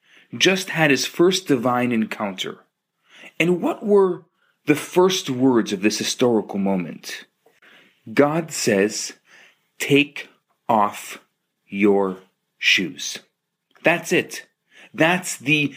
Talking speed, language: 100 wpm, English